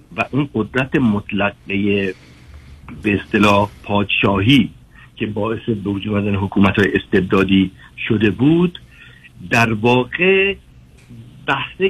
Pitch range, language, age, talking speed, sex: 105-145 Hz, Persian, 60-79, 95 wpm, male